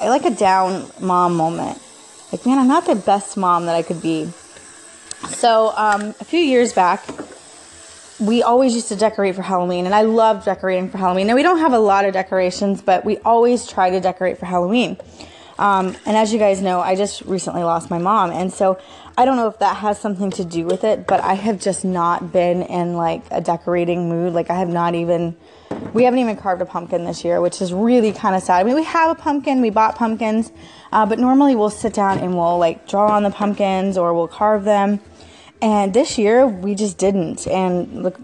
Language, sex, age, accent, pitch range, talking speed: English, female, 20-39, American, 180-225 Hz, 220 wpm